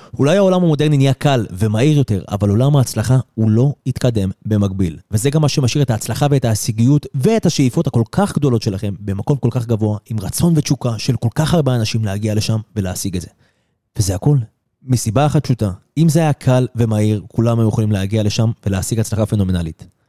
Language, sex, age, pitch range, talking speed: Hebrew, male, 30-49, 105-135 Hz, 190 wpm